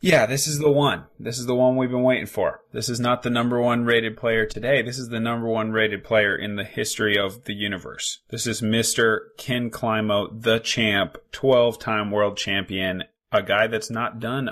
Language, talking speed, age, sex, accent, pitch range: English, 205 wpm, 20-39, male, American, 100-115 Hz